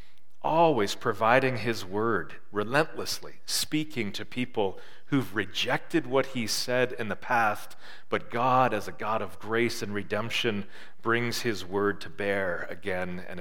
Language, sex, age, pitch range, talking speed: English, male, 40-59, 110-135 Hz, 145 wpm